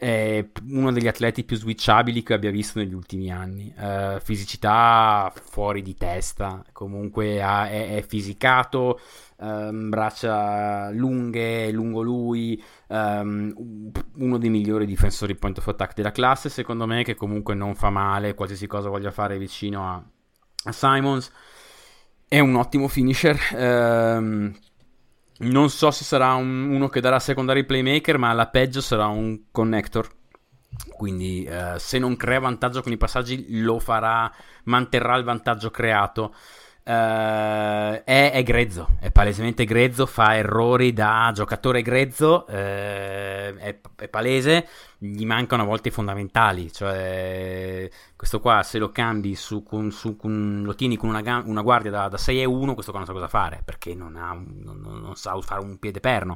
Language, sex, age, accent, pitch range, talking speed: Italian, male, 20-39, native, 100-125 Hz, 160 wpm